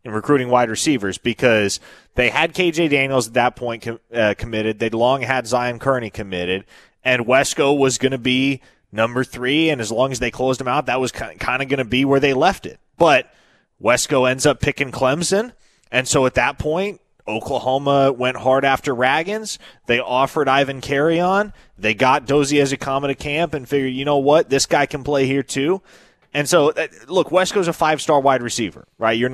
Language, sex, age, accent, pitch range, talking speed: English, male, 20-39, American, 120-140 Hz, 195 wpm